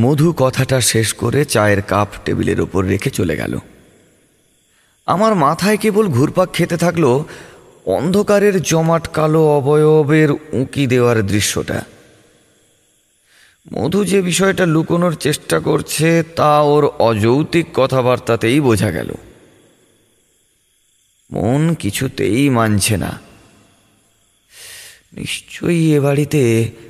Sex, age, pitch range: male, 30-49, 115-155 Hz